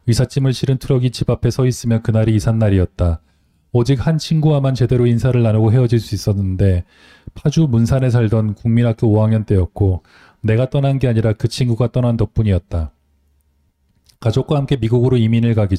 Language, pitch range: Korean, 100-130 Hz